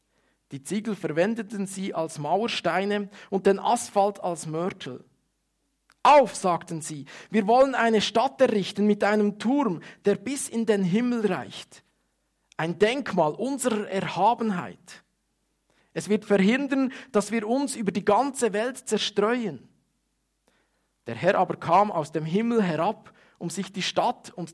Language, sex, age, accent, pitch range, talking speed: German, male, 50-69, Austrian, 175-225 Hz, 135 wpm